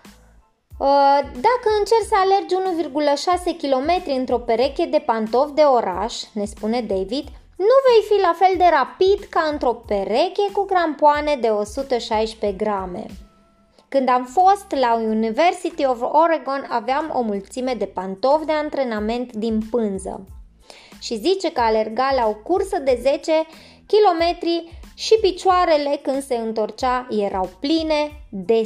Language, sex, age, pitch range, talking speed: Romanian, female, 20-39, 225-335 Hz, 135 wpm